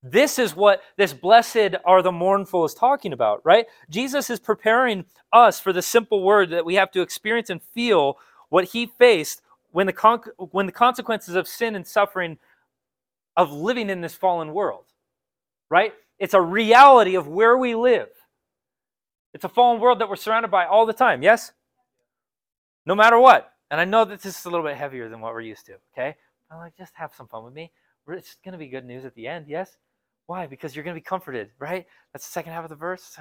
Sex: male